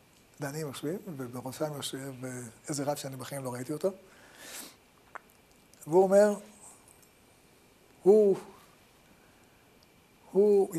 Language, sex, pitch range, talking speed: Hebrew, male, 145-190 Hz, 85 wpm